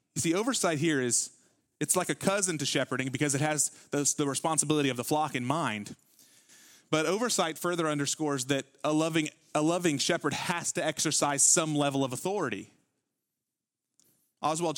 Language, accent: English, American